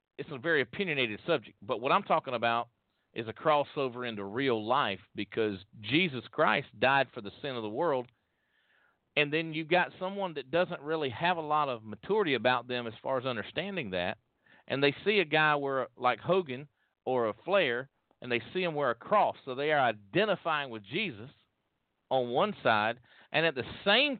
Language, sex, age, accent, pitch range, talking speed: English, male, 40-59, American, 120-170 Hz, 190 wpm